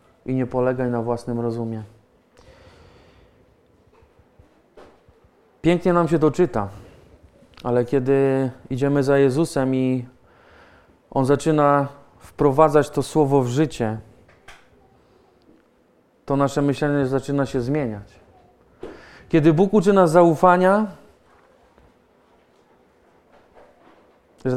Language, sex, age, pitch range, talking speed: Polish, male, 30-49, 130-165 Hz, 90 wpm